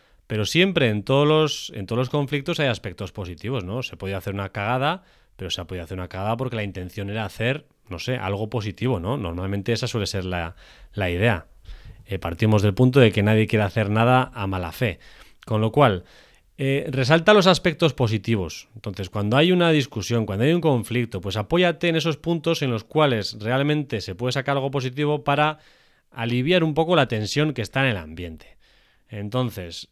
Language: Spanish